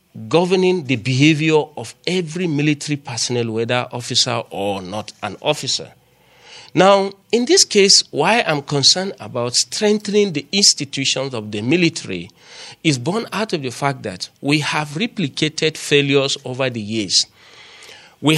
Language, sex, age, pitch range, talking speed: English, male, 40-59, 130-190 Hz, 135 wpm